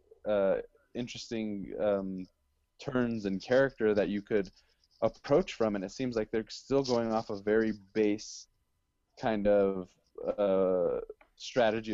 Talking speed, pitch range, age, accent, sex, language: 130 wpm, 100-120 Hz, 20-39, American, male, English